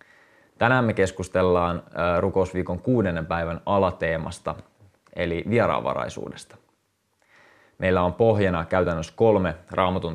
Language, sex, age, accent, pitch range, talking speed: Finnish, male, 20-39, native, 85-100 Hz, 90 wpm